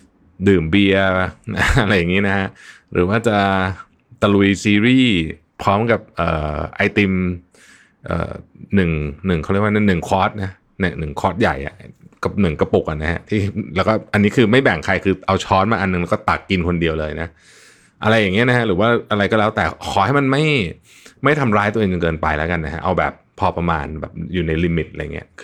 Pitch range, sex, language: 85-105 Hz, male, Thai